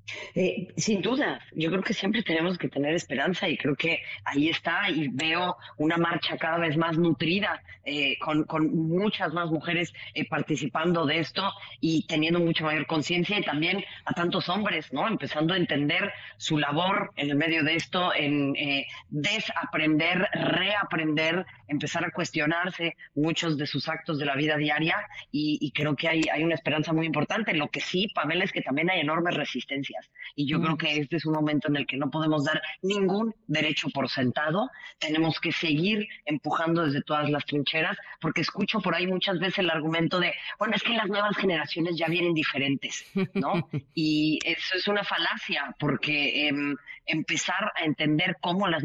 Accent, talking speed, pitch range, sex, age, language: Mexican, 180 wpm, 150-180 Hz, female, 30-49, Spanish